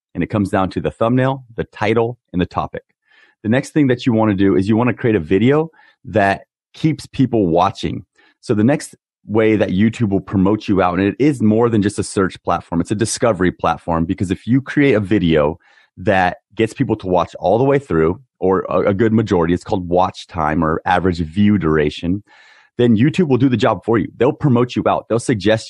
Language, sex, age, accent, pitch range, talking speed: English, male, 30-49, American, 95-115 Hz, 225 wpm